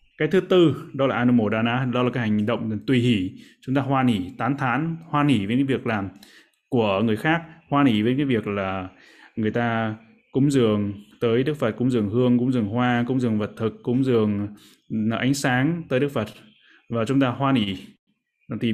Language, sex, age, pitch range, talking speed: Vietnamese, male, 20-39, 110-135 Hz, 205 wpm